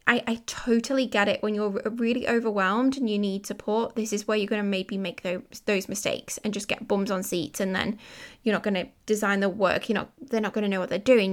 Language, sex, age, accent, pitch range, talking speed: English, female, 10-29, British, 205-245 Hz, 260 wpm